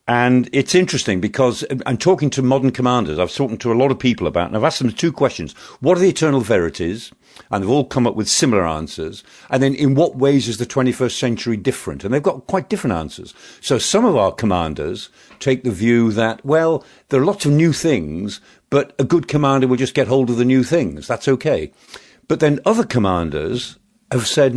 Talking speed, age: 215 wpm, 50-69